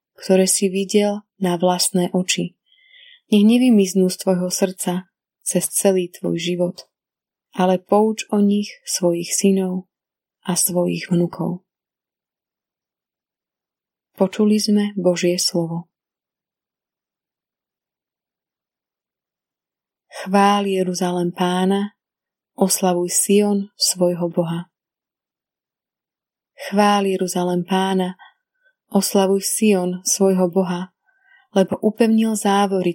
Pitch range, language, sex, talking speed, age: 180-200 Hz, Slovak, female, 80 wpm, 20-39